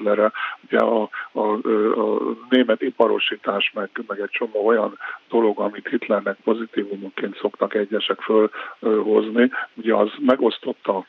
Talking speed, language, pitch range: 120 wpm, Hungarian, 110-120 Hz